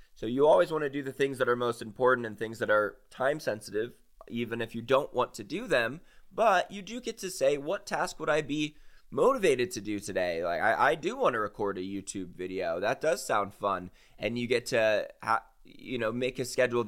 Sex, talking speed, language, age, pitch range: male, 230 wpm, English, 20-39, 115-175 Hz